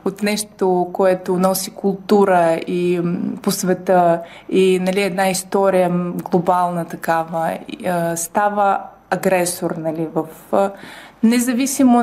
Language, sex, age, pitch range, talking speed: Bulgarian, female, 20-39, 190-235 Hz, 95 wpm